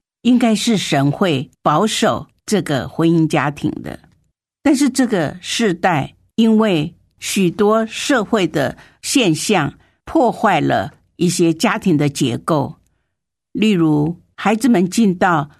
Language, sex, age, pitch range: Chinese, female, 50-69, 155-215 Hz